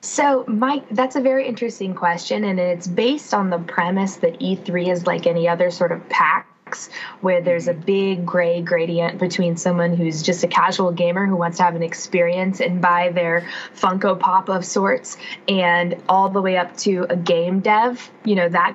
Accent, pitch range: American, 180-225 Hz